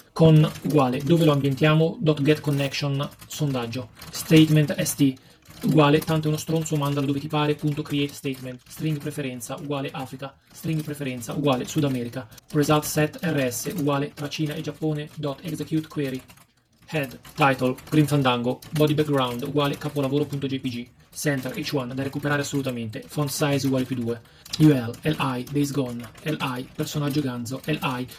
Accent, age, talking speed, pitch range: native, 30-49, 135 wpm, 130-155 Hz